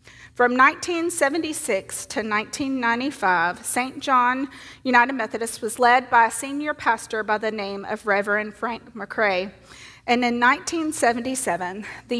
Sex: female